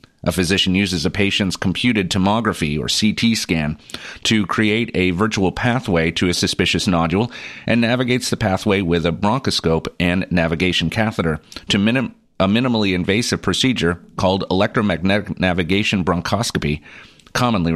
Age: 40-59